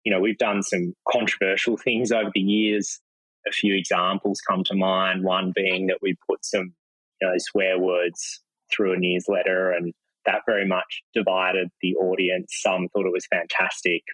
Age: 20-39